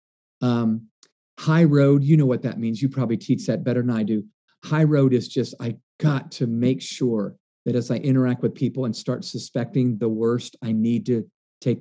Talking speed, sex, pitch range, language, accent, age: 205 wpm, male, 115-150 Hz, English, American, 50-69